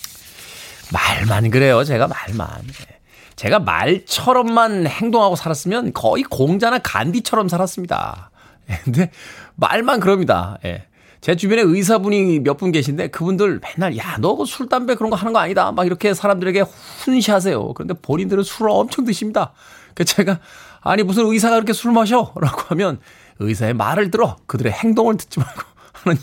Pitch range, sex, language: 130-210 Hz, male, Korean